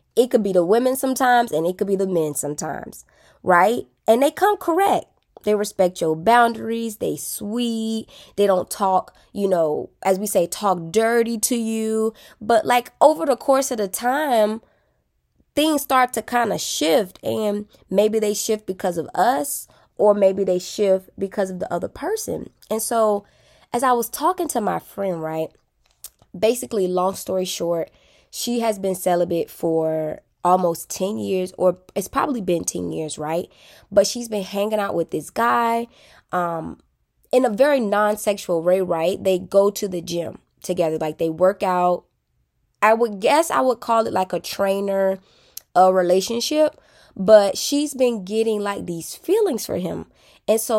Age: 20-39